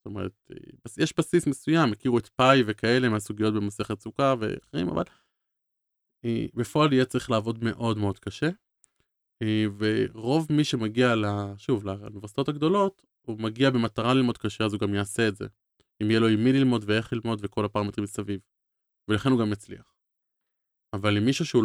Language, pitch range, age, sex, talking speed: Hebrew, 105-130 Hz, 20-39, male, 160 wpm